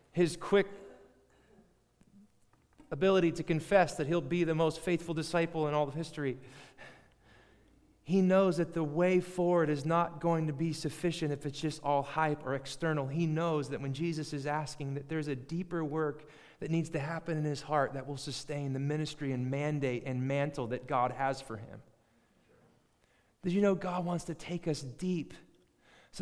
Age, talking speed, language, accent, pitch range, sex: 30-49, 180 wpm, English, American, 155-190 Hz, male